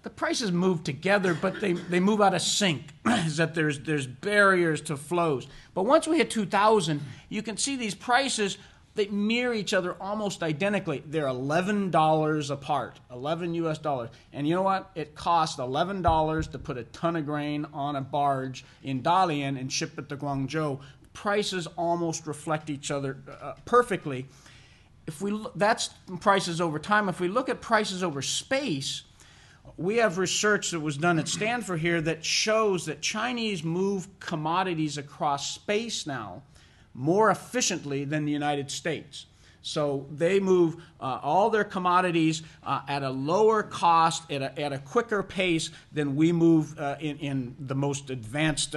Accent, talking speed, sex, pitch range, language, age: American, 165 wpm, male, 145-195 Hz, English, 40-59